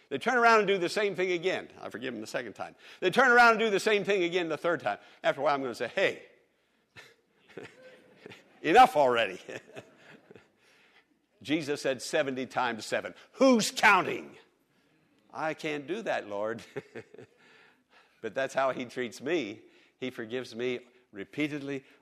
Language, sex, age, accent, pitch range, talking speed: English, male, 60-79, American, 125-195 Hz, 160 wpm